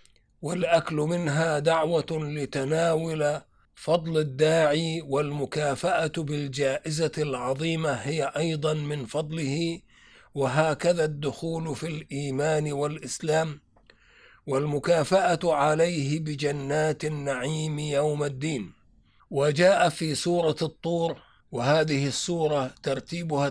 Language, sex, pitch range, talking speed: Arabic, male, 140-155 Hz, 80 wpm